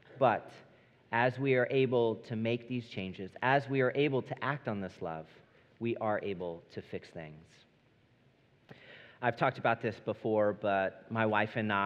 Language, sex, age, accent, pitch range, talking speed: English, male, 40-59, American, 105-125 Hz, 165 wpm